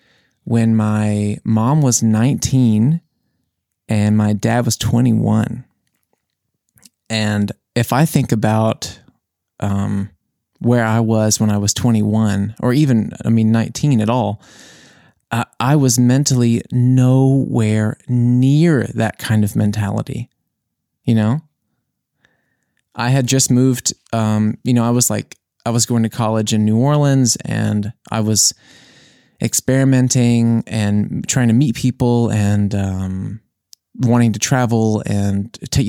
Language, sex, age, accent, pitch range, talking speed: English, male, 20-39, American, 110-125 Hz, 125 wpm